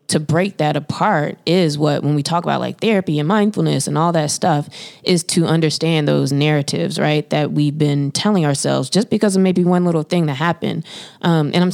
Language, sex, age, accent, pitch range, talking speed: English, female, 20-39, American, 150-180 Hz, 210 wpm